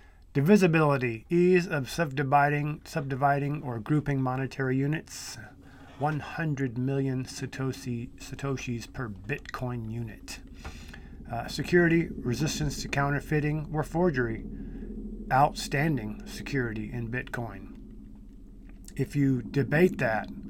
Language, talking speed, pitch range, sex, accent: English, 90 wpm, 120-140 Hz, male, American